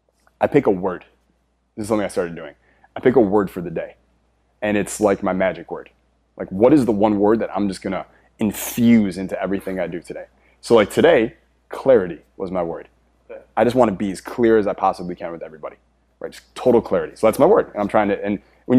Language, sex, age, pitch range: English, male, 20-39, 90-110 Hz